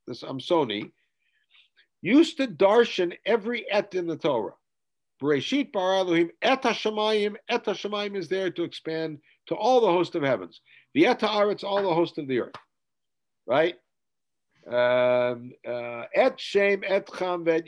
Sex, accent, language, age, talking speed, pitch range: male, American, English, 60-79, 155 wpm, 155-210 Hz